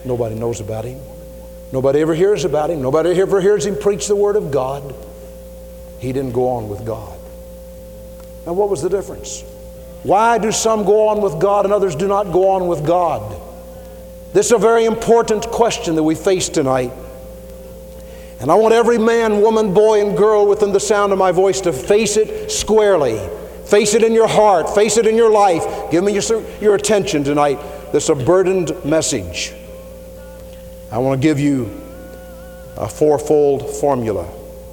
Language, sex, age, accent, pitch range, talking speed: English, male, 60-79, American, 110-190 Hz, 175 wpm